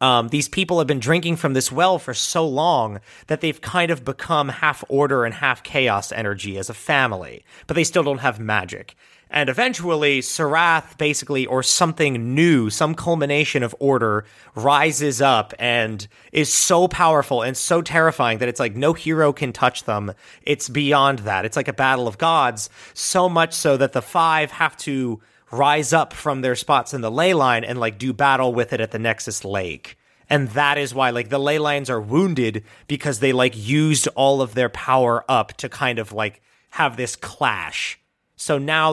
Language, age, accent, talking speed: English, 30-49, American, 190 wpm